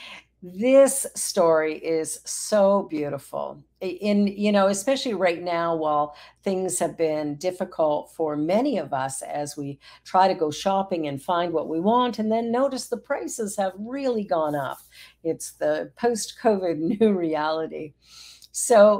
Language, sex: English, female